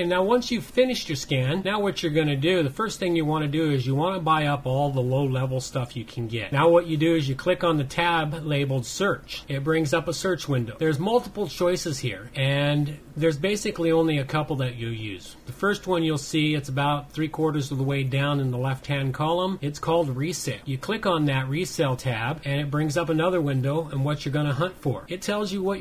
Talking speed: 245 wpm